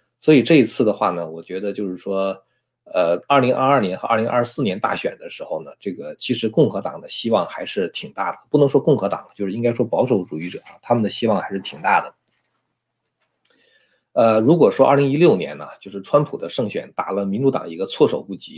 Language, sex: Chinese, male